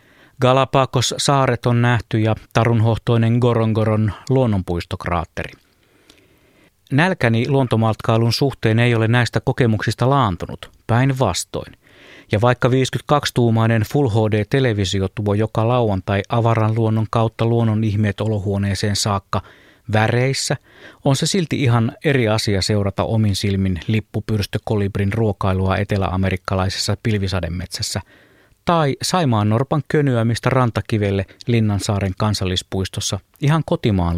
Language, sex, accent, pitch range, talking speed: Finnish, male, native, 100-125 Hz, 100 wpm